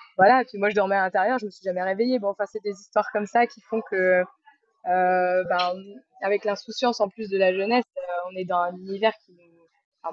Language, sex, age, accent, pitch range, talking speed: French, female, 20-39, French, 185-235 Hz, 245 wpm